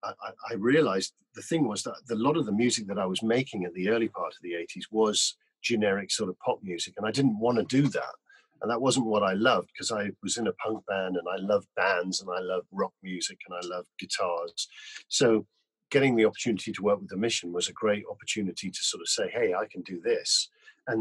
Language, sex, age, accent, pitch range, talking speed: English, male, 40-59, British, 95-140 Hz, 245 wpm